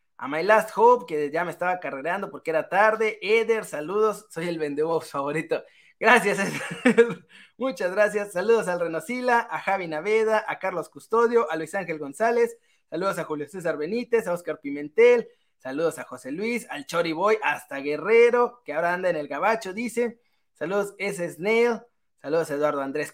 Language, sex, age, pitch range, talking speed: Spanish, male, 20-39, 170-235 Hz, 170 wpm